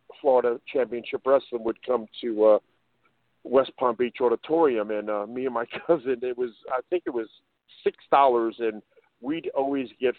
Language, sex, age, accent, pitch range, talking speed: English, male, 50-69, American, 120-145 Hz, 165 wpm